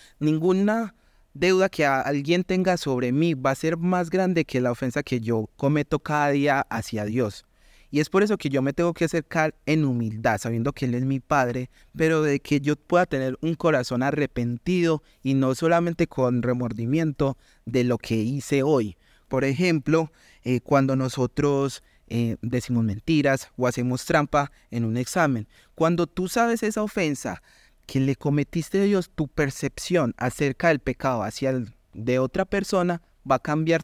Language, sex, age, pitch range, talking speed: Spanish, male, 30-49, 125-160 Hz, 170 wpm